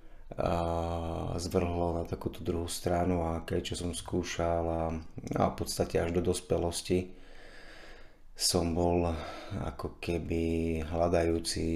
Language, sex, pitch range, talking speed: Slovak, male, 85-95 Hz, 115 wpm